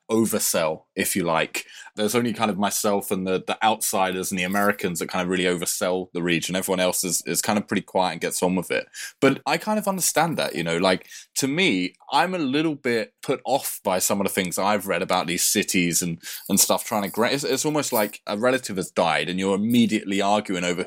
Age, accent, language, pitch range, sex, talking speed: 20-39, British, English, 95-115 Hz, male, 235 wpm